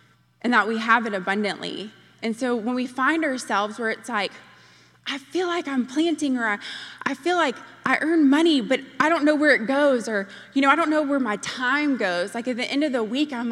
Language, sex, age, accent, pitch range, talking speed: Dutch, female, 20-39, American, 215-275 Hz, 230 wpm